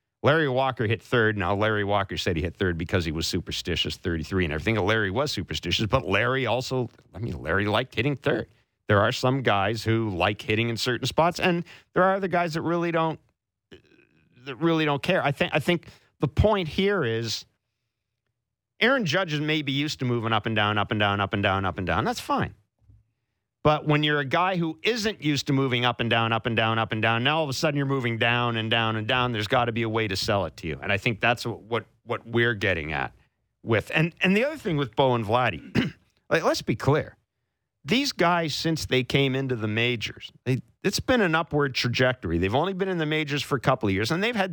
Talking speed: 235 wpm